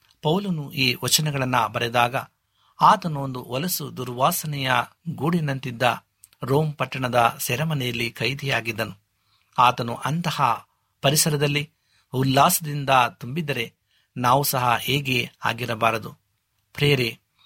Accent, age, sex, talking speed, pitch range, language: native, 60-79, male, 80 wpm, 120-145 Hz, Kannada